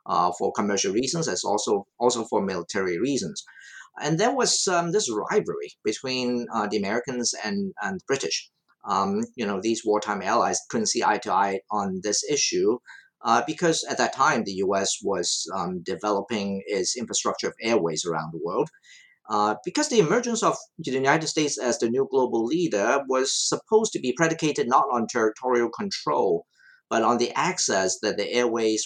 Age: 50-69